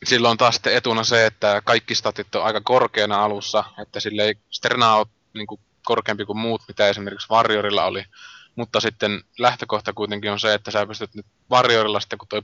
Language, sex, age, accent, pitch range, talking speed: Finnish, male, 20-39, native, 105-115 Hz, 190 wpm